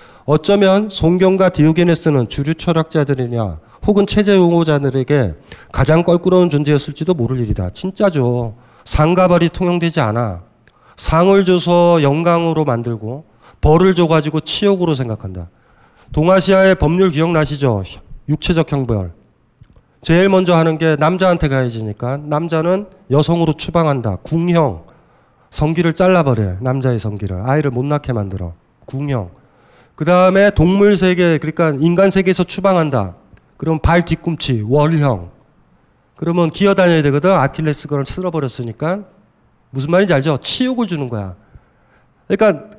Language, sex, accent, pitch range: Korean, male, native, 135-190 Hz